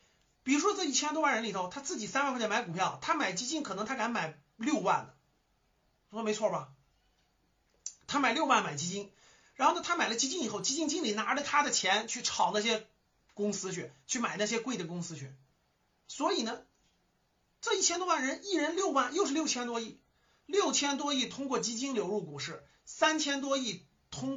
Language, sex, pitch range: Chinese, male, 190-275 Hz